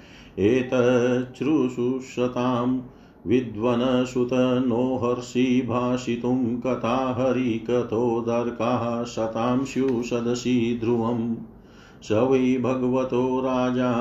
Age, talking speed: 50-69, 70 wpm